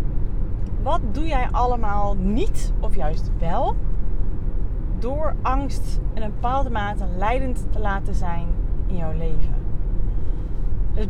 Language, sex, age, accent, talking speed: Dutch, female, 30-49, Dutch, 120 wpm